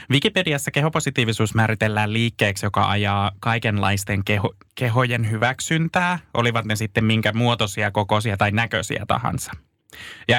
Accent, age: native, 20-39